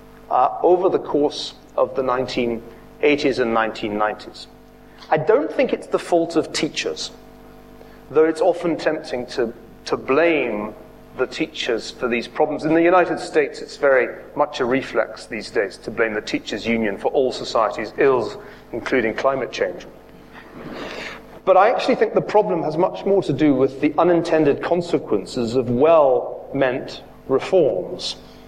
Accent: British